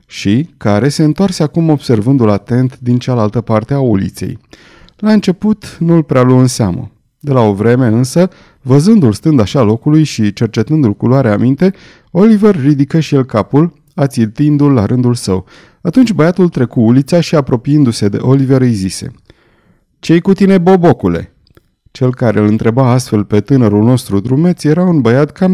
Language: Romanian